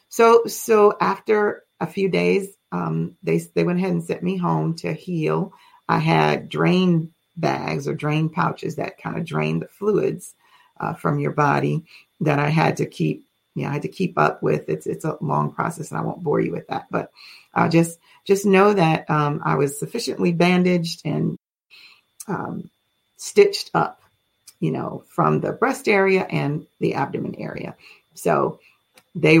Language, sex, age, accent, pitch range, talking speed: English, female, 40-59, American, 145-195 Hz, 180 wpm